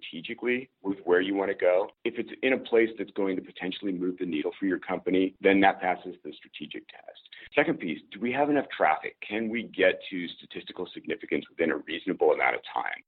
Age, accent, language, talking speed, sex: 40-59, American, English, 215 wpm, male